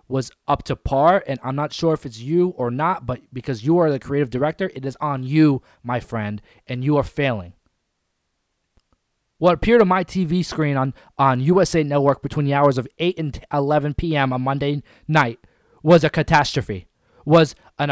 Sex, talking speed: male, 190 wpm